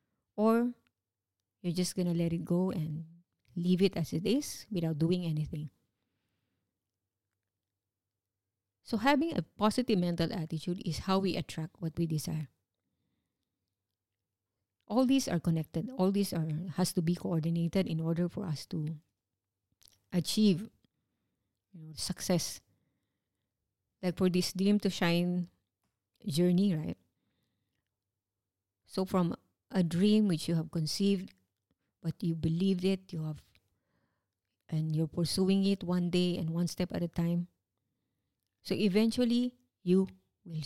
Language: English